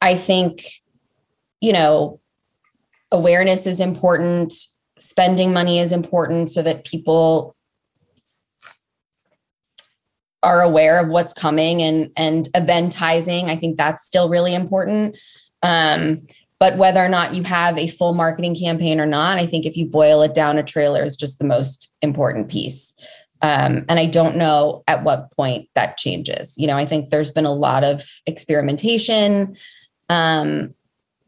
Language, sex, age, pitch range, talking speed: English, female, 20-39, 155-180 Hz, 150 wpm